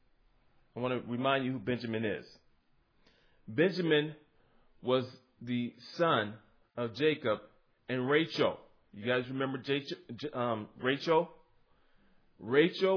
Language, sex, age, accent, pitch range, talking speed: English, male, 40-59, American, 115-150 Hz, 95 wpm